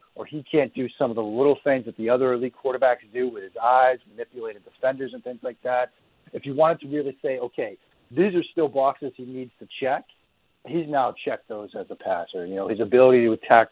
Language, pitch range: English, 110-130 Hz